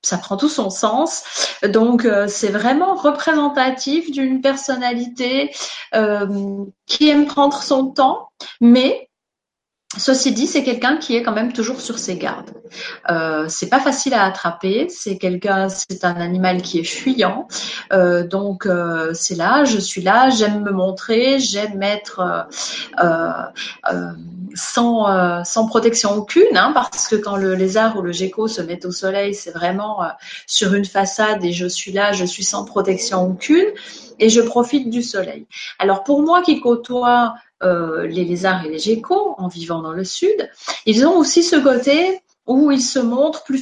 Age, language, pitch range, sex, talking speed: 30-49, French, 195-270 Hz, female, 170 wpm